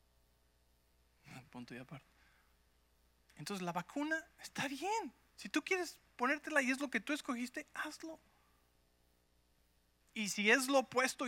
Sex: male